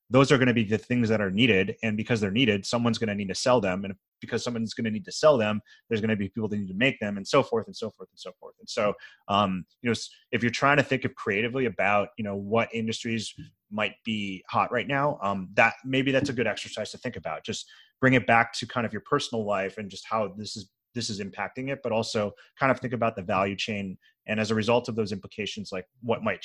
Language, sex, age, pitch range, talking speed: English, male, 30-49, 105-120 Hz, 270 wpm